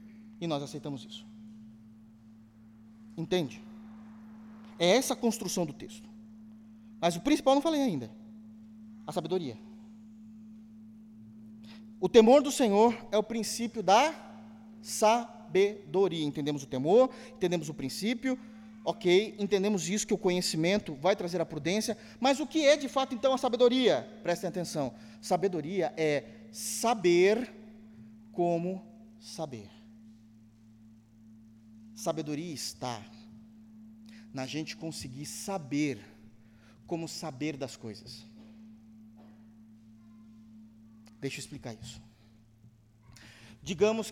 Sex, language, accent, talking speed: male, Portuguese, Brazilian, 100 wpm